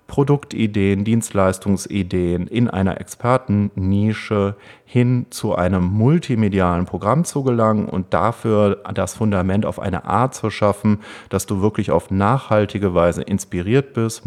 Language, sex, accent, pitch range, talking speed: German, male, German, 95-120 Hz, 120 wpm